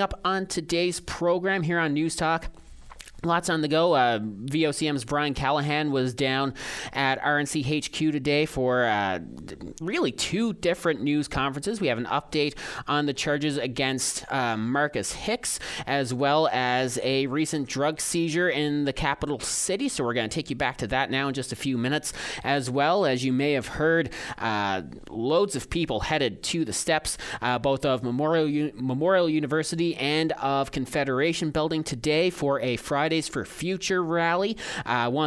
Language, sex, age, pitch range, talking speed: English, male, 30-49, 130-160 Hz, 170 wpm